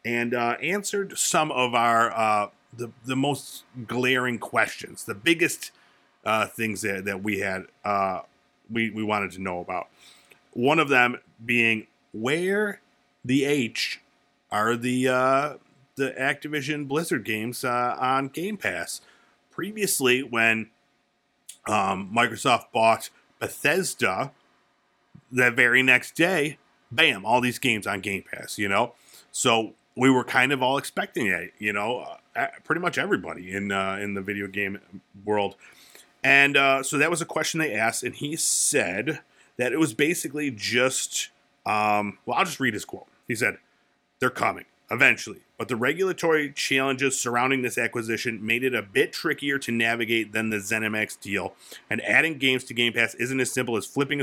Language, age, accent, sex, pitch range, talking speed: English, 40-59, American, male, 110-140 Hz, 155 wpm